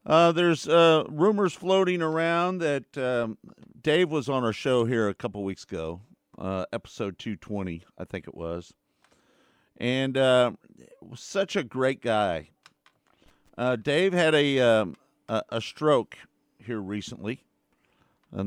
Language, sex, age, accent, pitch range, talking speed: English, male, 50-69, American, 105-145 Hz, 135 wpm